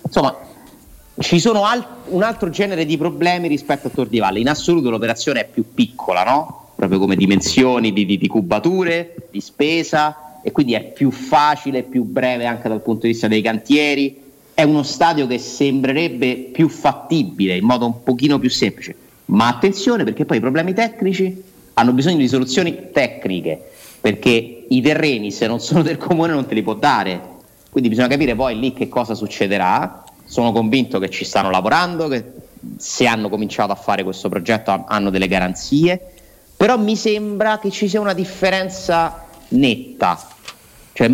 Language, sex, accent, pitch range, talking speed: Italian, male, native, 110-160 Hz, 170 wpm